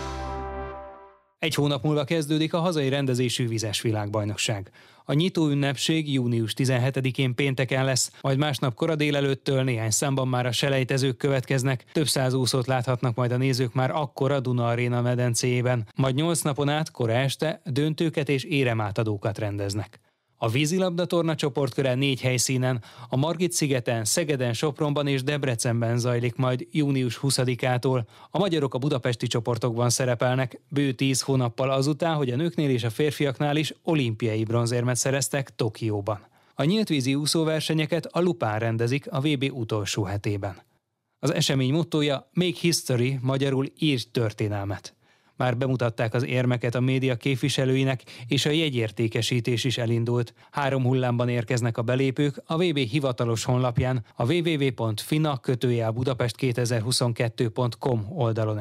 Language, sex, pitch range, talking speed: Hungarian, male, 120-140 Hz, 130 wpm